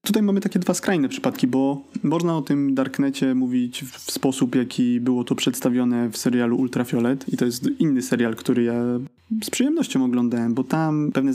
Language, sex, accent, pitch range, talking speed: Polish, male, native, 125-160 Hz, 180 wpm